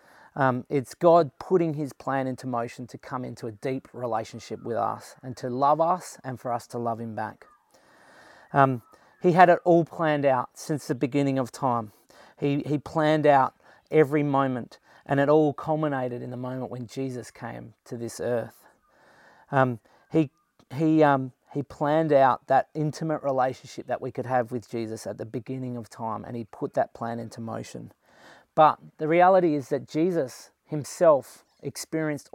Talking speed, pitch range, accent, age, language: 175 wpm, 125-150 Hz, Australian, 30-49, English